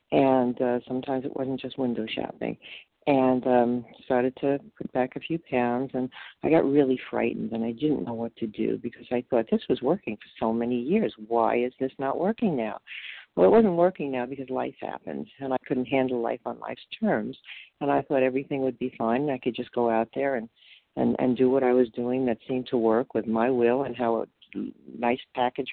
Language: English